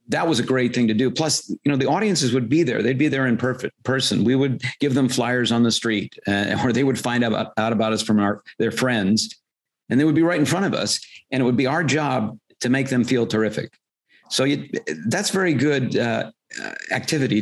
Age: 50-69